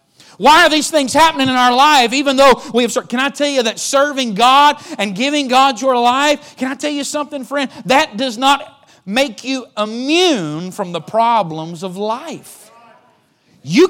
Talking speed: 185 wpm